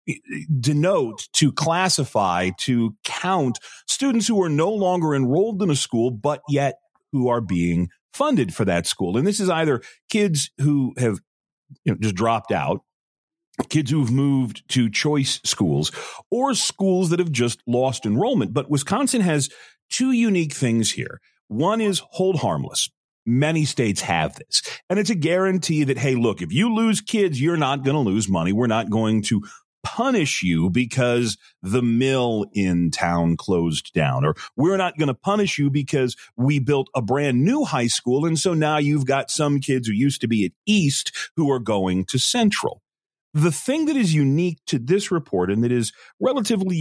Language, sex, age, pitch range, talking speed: English, male, 40-59, 120-180 Hz, 175 wpm